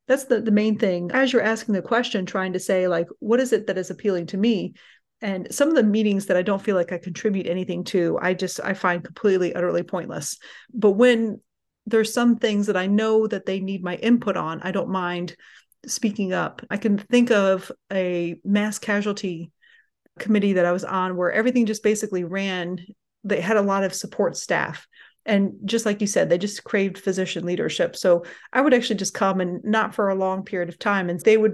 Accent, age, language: American, 30-49, English